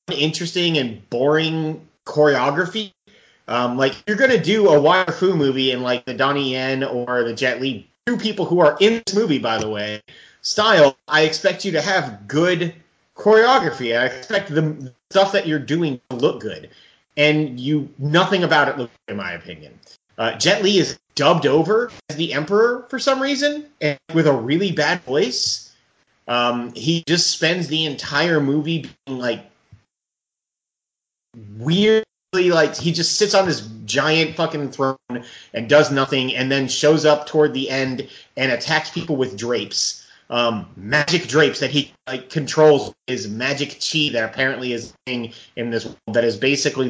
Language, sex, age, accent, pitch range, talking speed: English, male, 30-49, American, 125-165 Hz, 170 wpm